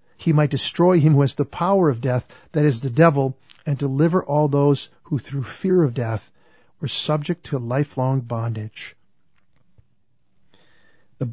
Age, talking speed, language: 50-69, 155 wpm, English